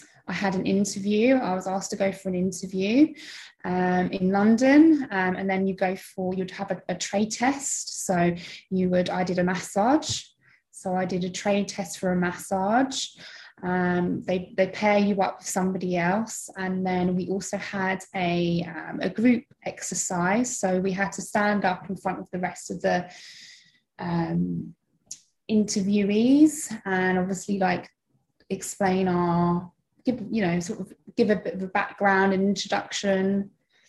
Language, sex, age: English, female, 20-39